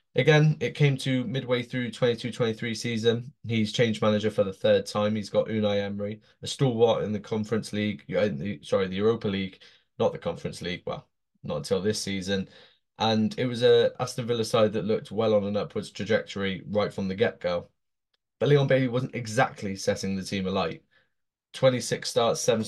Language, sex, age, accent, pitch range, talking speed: English, male, 20-39, British, 100-120 Hz, 190 wpm